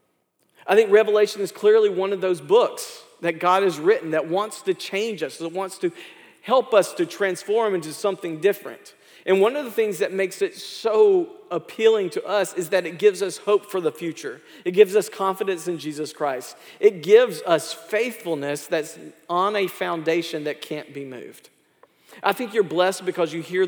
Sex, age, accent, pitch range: male, 40-59, American, 155-200 Hz